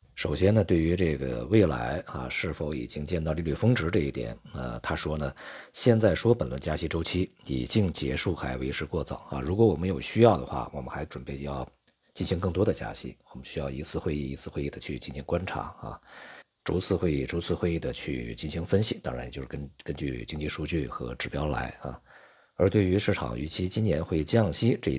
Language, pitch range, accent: Chinese, 70-100 Hz, native